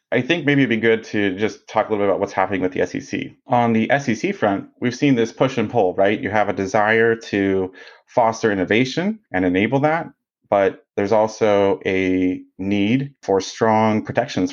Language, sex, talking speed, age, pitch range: English, male, 195 wpm, 30-49, 95-115 Hz